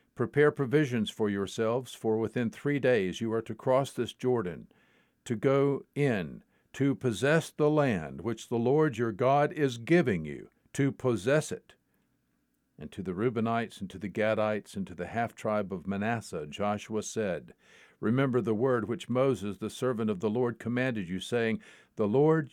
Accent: American